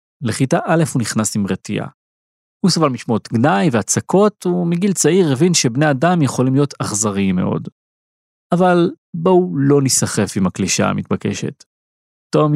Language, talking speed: Hebrew, 135 wpm